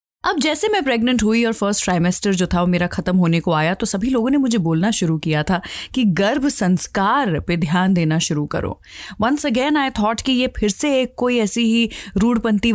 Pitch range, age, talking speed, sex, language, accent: 175-245 Hz, 30-49, 215 wpm, female, Hindi, native